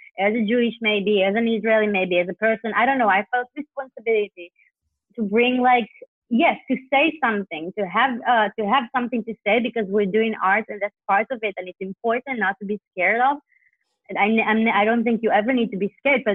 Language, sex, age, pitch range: English, female, 30-49, 205-250 Hz